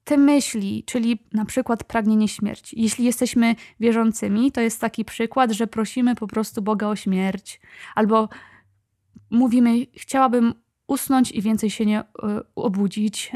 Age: 20-39